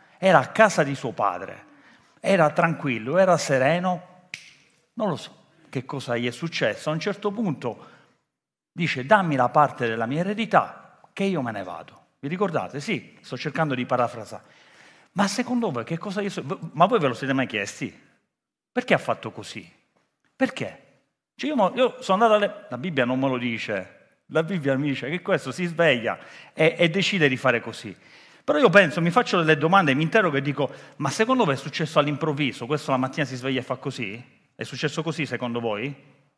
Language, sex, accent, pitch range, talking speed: Italian, male, native, 135-190 Hz, 190 wpm